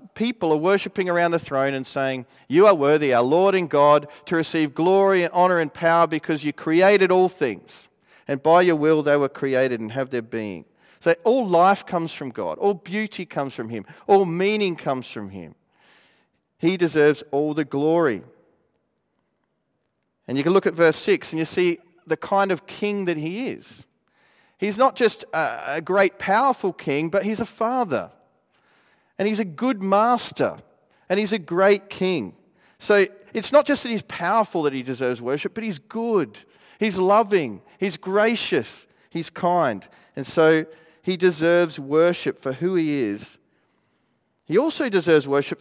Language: English